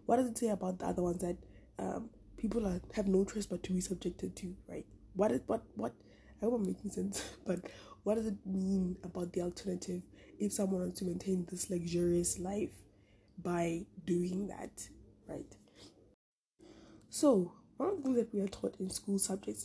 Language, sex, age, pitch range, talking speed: English, female, 20-39, 180-210 Hz, 185 wpm